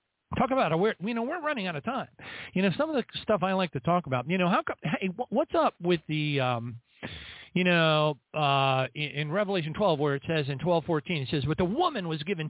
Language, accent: English, American